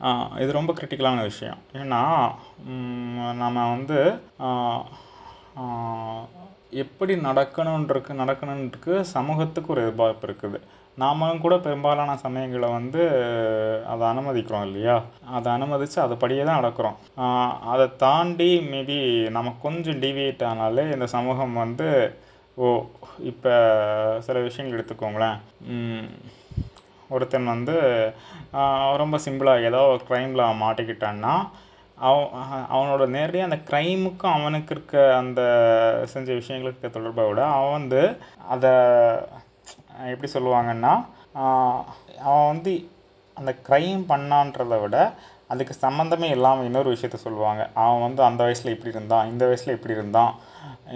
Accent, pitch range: native, 115-140 Hz